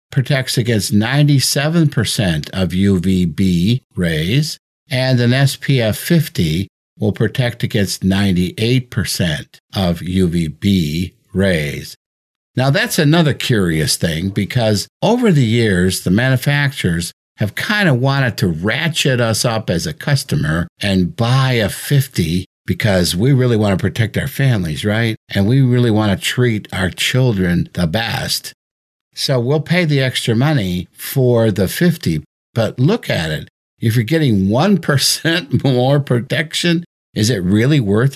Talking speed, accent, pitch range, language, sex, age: 135 wpm, American, 100-145 Hz, English, male, 60-79